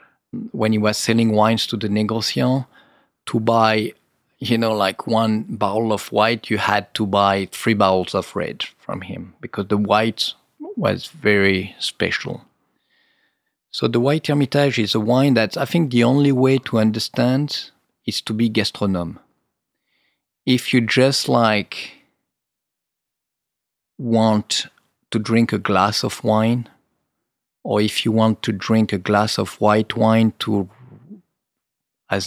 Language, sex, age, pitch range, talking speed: English, male, 40-59, 100-115 Hz, 140 wpm